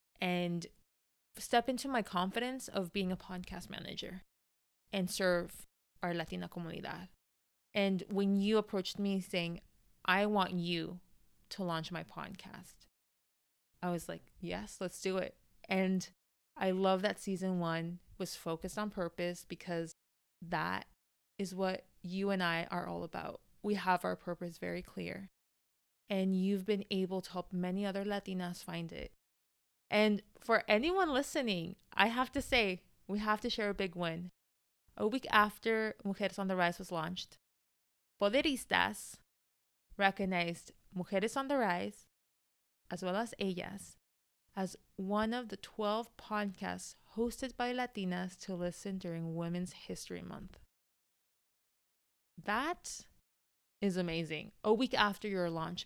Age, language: 20-39, English